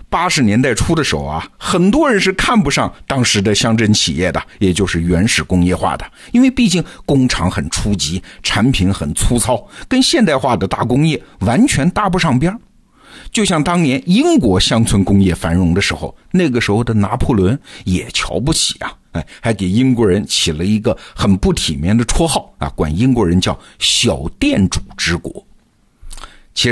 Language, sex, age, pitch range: Chinese, male, 50-69, 90-140 Hz